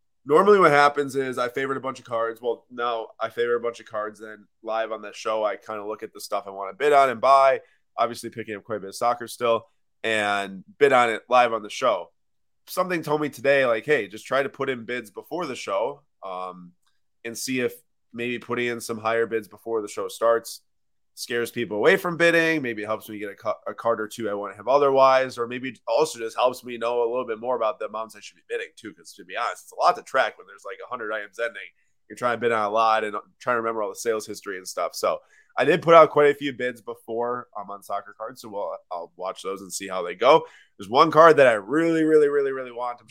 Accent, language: American, English